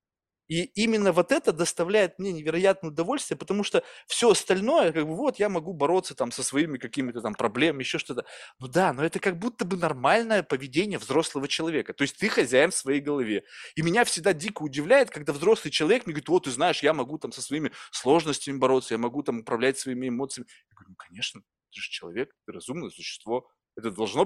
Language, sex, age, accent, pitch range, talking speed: Russian, male, 20-39, native, 130-180 Hz, 205 wpm